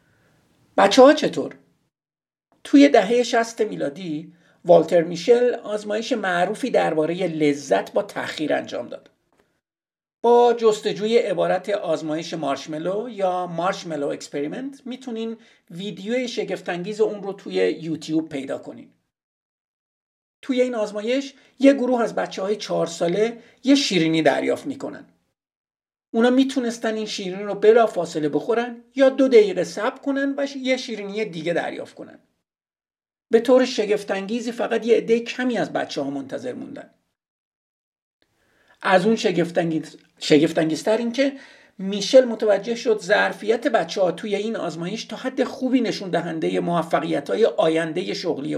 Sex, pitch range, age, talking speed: male, 170-240 Hz, 50-69, 125 wpm